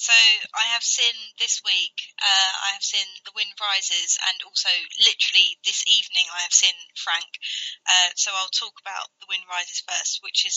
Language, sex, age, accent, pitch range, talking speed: English, female, 20-39, British, 180-200 Hz, 185 wpm